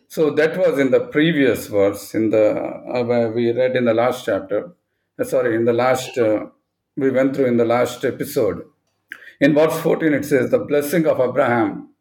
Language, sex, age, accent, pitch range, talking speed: English, male, 50-69, Indian, 125-155 Hz, 195 wpm